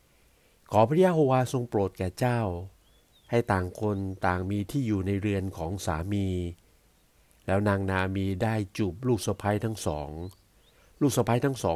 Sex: male